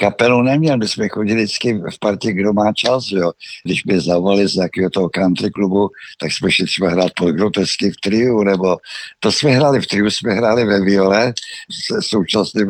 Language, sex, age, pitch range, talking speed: Czech, male, 60-79, 95-115 Hz, 190 wpm